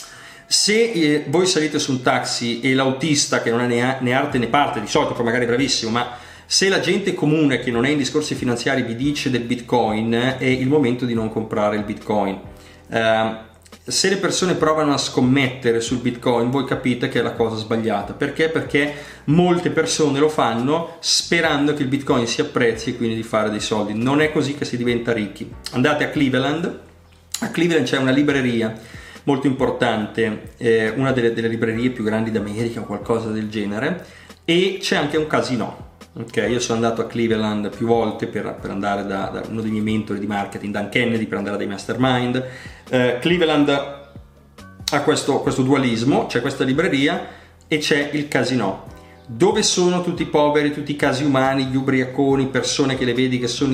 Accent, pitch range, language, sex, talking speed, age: native, 115-145 Hz, Italian, male, 185 wpm, 30-49